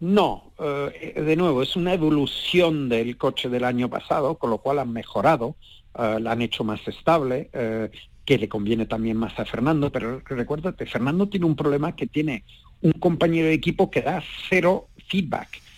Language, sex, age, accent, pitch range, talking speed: Spanish, male, 50-69, Mexican, 120-155 Hz, 180 wpm